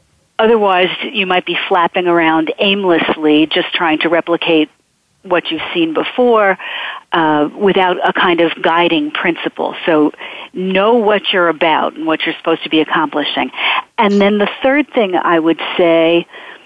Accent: American